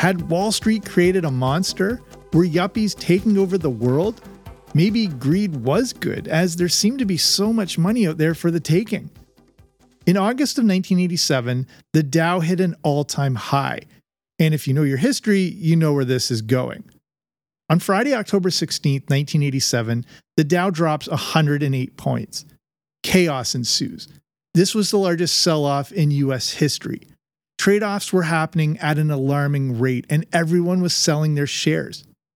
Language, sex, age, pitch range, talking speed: English, male, 40-59, 145-185 Hz, 155 wpm